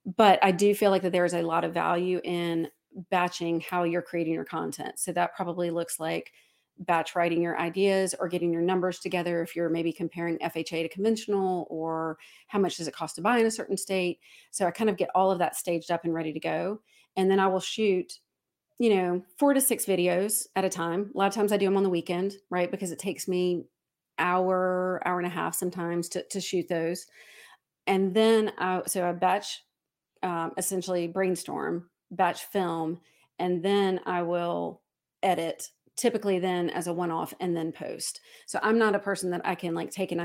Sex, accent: female, American